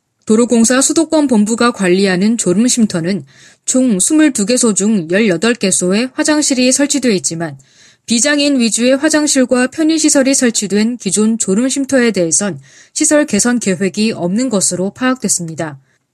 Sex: female